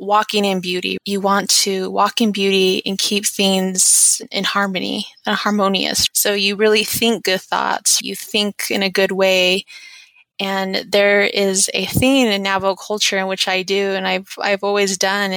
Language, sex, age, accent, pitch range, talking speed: English, female, 20-39, American, 190-215 Hz, 175 wpm